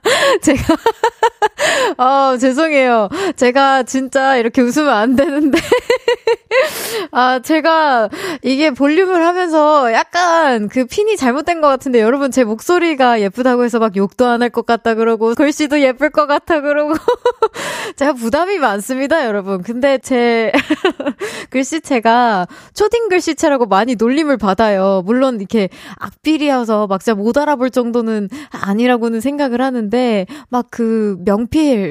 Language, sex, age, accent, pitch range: Korean, female, 20-39, native, 210-300 Hz